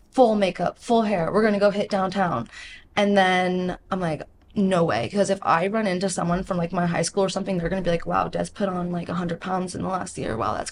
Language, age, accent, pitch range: English, 20-39, American, 170-195 Hz